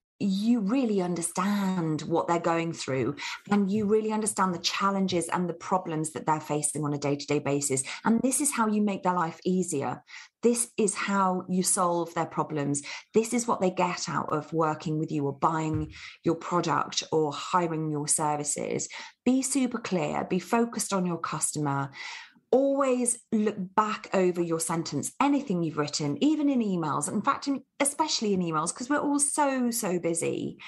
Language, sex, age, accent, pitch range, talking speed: English, female, 30-49, British, 165-225 Hz, 175 wpm